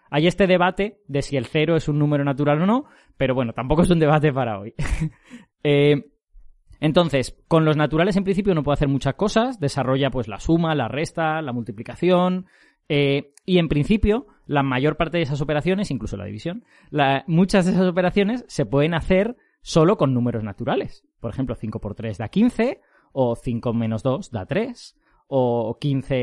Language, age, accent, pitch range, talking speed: Spanish, 20-39, Spanish, 130-180 Hz, 185 wpm